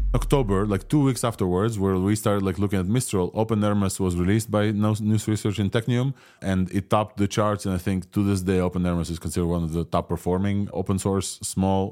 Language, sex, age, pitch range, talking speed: English, male, 20-39, 90-110 Hz, 225 wpm